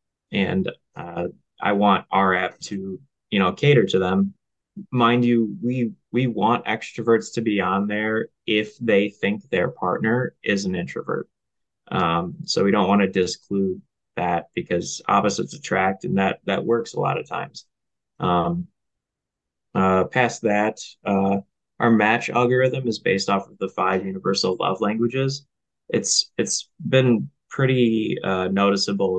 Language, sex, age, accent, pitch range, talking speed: English, male, 20-39, American, 95-120 Hz, 150 wpm